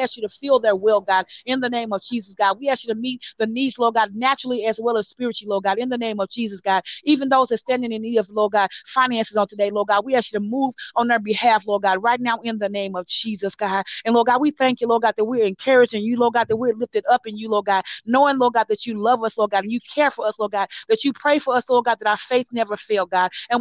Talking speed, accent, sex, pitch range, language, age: 300 wpm, American, female, 210-245 Hz, English, 30-49